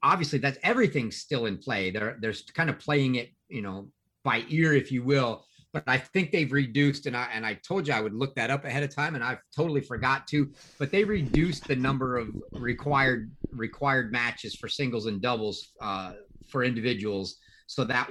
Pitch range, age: 115-145 Hz, 40-59